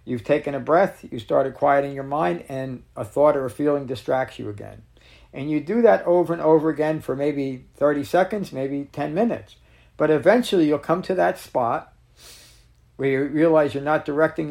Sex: male